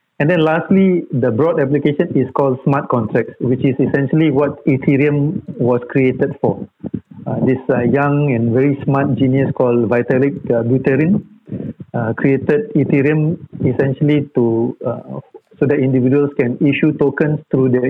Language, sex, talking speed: Malay, male, 150 wpm